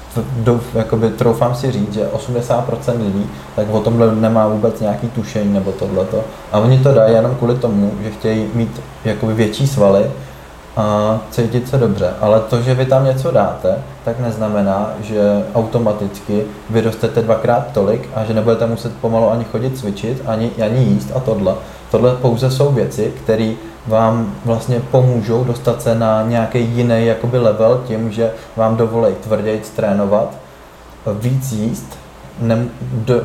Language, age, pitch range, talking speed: Slovak, 20-39, 105-120 Hz, 150 wpm